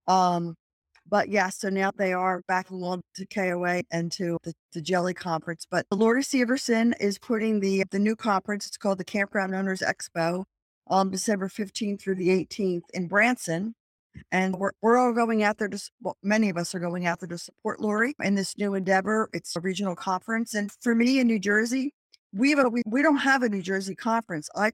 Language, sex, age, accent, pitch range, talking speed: English, female, 50-69, American, 185-215 Hz, 205 wpm